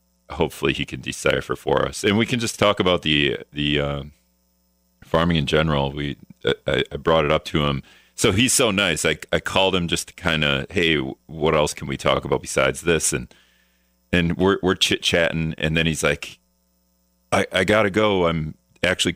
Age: 40-59